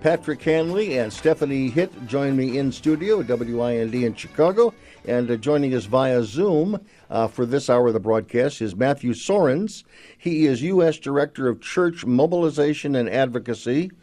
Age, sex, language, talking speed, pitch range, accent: 50-69, male, English, 165 wpm, 110-135 Hz, American